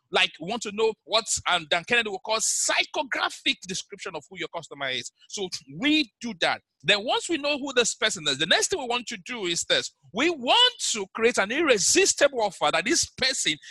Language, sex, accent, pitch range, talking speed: English, male, Nigerian, 180-255 Hz, 215 wpm